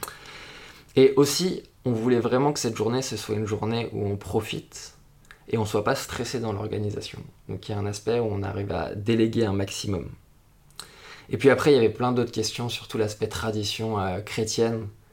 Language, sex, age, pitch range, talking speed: French, male, 20-39, 105-125 Hz, 200 wpm